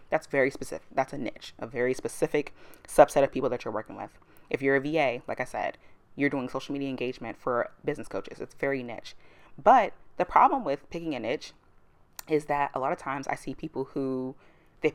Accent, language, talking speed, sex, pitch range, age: American, English, 210 wpm, female, 135-160 Hz, 20-39